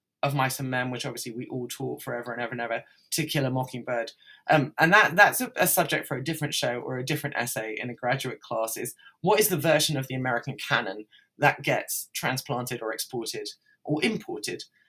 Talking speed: 215 wpm